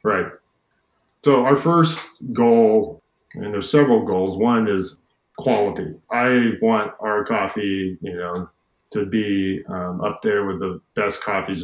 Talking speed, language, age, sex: 140 wpm, English, 40-59, male